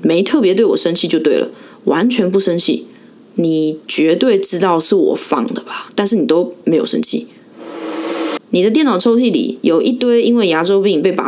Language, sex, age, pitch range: Chinese, female, 20-39, 170-230 Hz